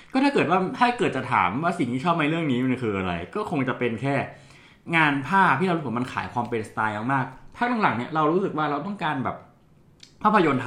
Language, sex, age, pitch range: Thai, male, 20-39, 110-150 Hz